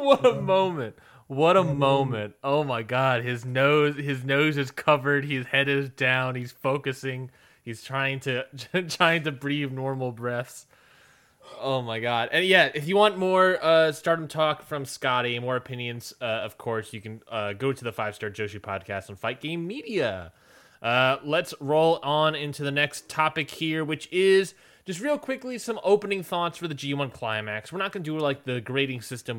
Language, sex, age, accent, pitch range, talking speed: English, male, 20-39, American, 120-155 Hz, 185 wpm